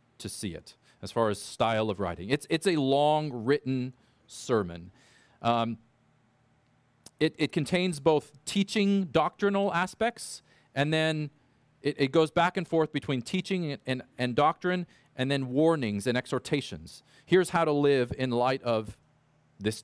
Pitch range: 115-150 Hz